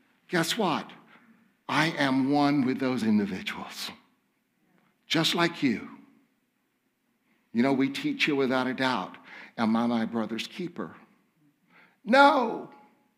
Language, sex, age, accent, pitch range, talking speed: English, male, 60-79, American, 150-230 Hz, 115 wpm